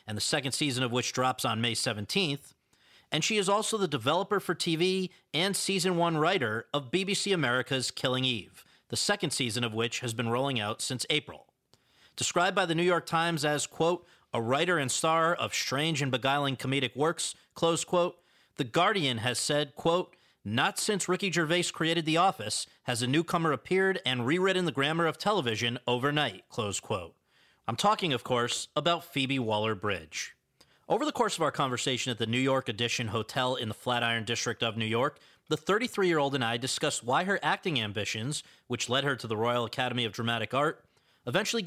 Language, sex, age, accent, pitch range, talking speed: English, male, 40-59, American, 120-170 Hz, 185 wpm